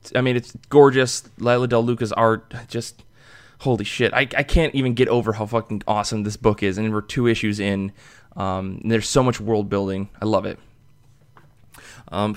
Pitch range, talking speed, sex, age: 110-130 Hz, 190 wpm, male, 20-39